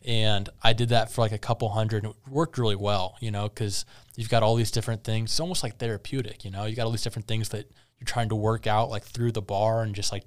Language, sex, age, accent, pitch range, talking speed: English, male, 20-39, American, 110-125 Hz, 280 wpm